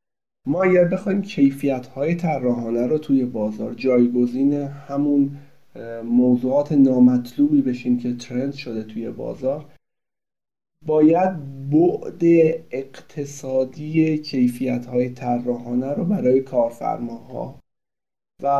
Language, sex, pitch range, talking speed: Persian, male, 125-145 Hz, 95 wpm